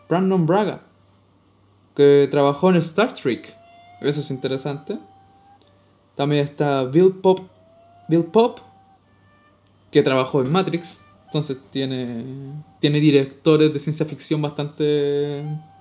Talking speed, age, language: 105 wpm, 20-39, Spanish